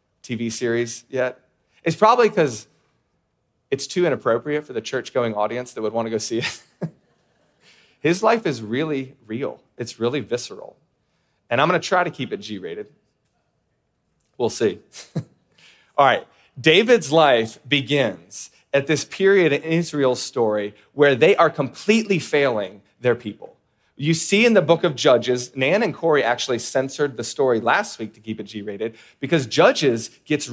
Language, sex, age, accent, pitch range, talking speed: English, male, 30-49, American, 115-155 Hz, 160 wpm